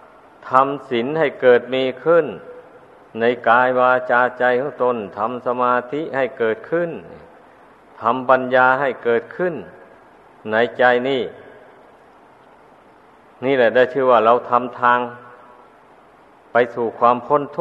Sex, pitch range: male, 120-135 Hz